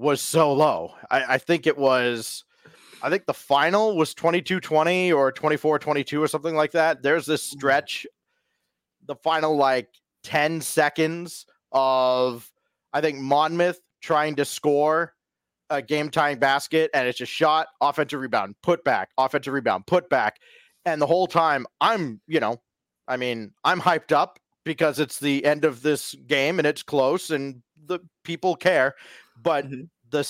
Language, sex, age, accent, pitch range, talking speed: English, male, 30-49, American, 135-165 Hz, 160 wpm